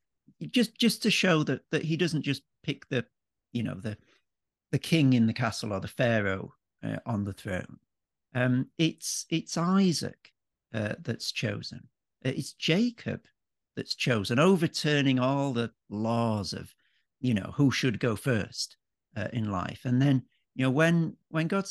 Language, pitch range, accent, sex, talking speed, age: English, 115-155 Hz, British, male, 160 wpm, 50-69